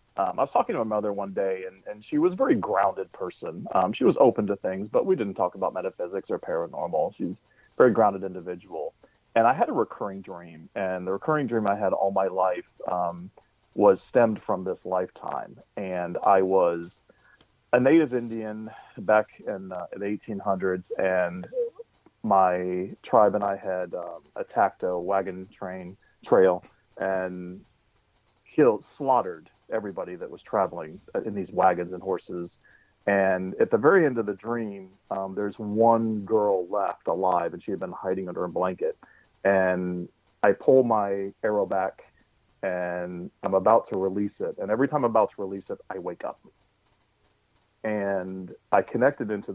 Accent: American